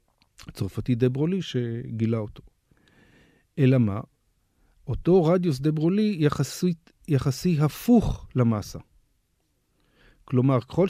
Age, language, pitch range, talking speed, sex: 40-59, Hebrew, 120-150 Hz, 90 wpm, male